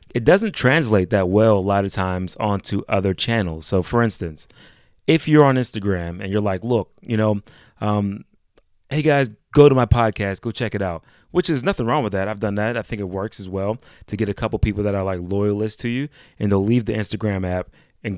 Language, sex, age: English, male, 30-49